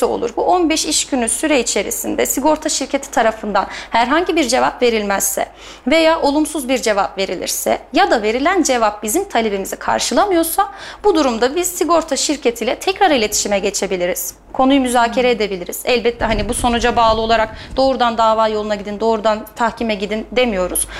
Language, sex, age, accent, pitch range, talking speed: Turkish, female, 30-49, native, 220-310 Hz, 145 wpm